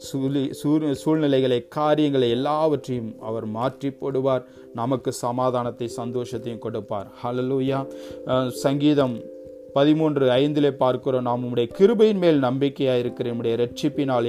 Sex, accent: male, native